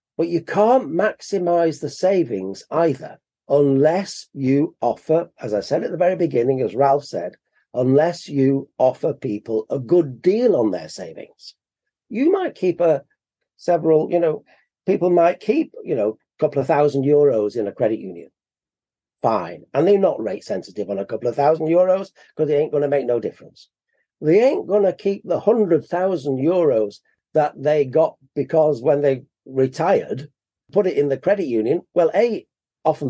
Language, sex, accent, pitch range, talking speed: English, male, British, 135-175 Hz, 175 wpm